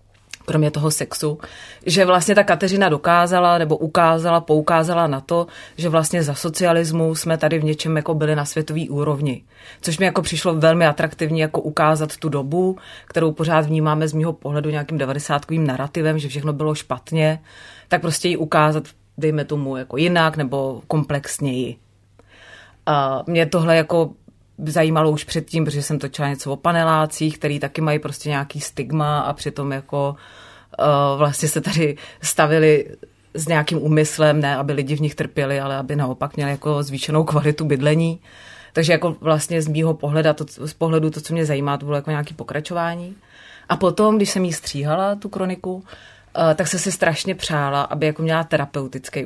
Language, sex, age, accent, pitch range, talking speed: Czech, female, 30-49, native, 145-165 Hz, 170 wpm